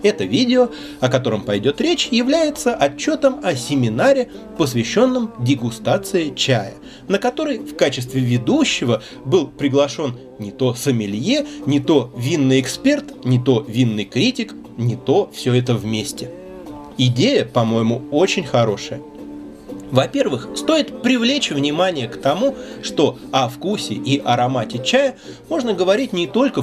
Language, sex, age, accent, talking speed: Russian, male, 30-49, native, 125 wpm